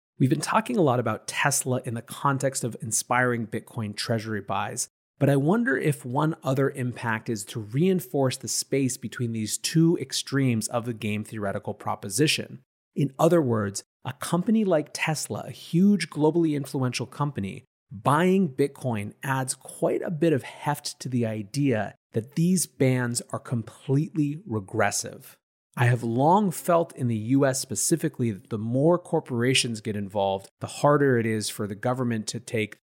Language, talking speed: English, 160 wpm